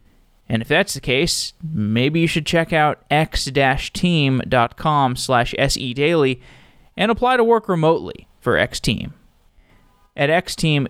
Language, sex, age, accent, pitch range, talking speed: English, male, 30-49, American, 120-160 Hz, 120 wpm